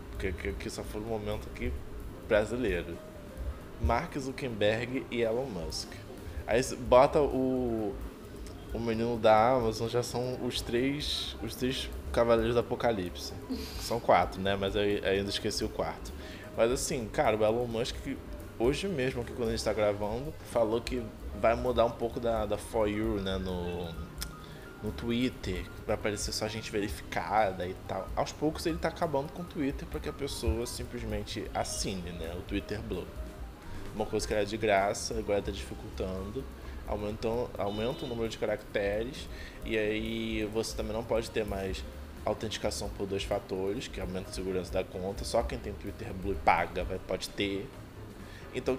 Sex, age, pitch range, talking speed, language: male, 20-39, 95-115 Hz, 165 wpm, Portuguese